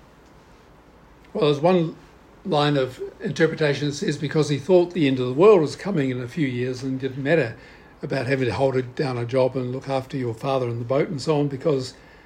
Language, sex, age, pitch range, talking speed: English, male, 60-79, 145-185 Hz, 215 wpm